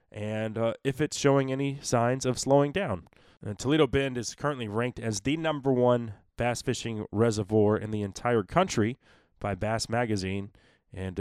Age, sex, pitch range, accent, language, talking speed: 20-39, male, 115-150 Hz, American, English, 160 wpm